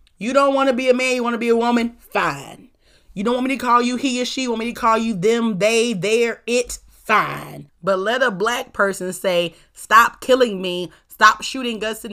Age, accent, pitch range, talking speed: 30-49, American, 170-235 Hz, 235 wpm